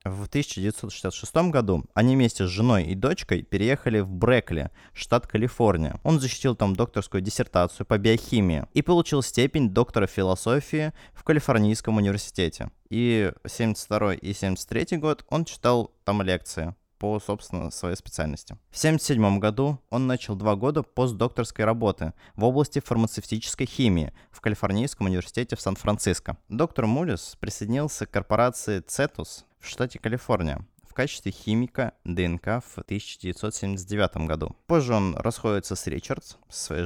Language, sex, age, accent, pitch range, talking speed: Russian, male, 20-39, native, 95-125 Hz, 135 wpm